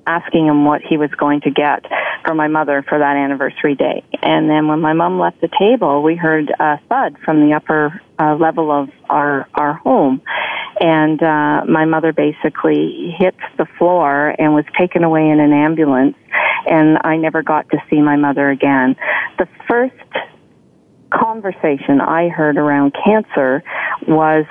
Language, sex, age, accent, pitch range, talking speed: English, female, 40-59, American, 145-160 Hz, 165 wpm